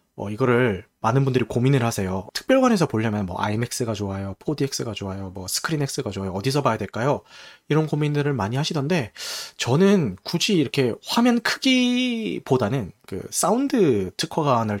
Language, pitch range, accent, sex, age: Korean, 115-170 Hz, native, male, 30-49